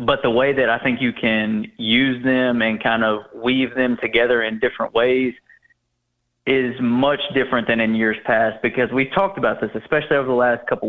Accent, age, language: American, 30-49, English